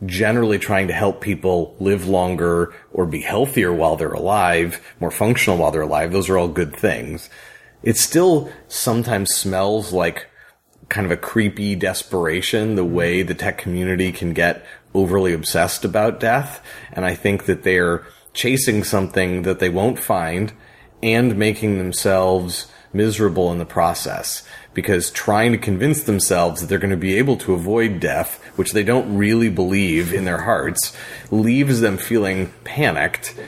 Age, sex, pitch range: 30-49, male, 90-110 Hz